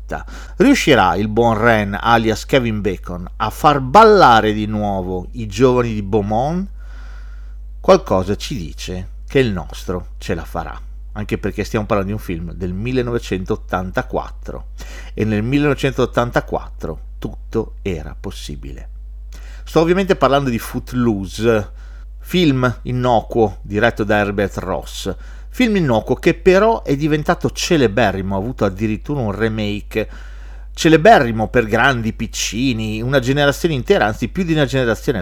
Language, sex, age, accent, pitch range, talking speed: Italian, male, 40-59, native, 100-145 Hz, 130 wpm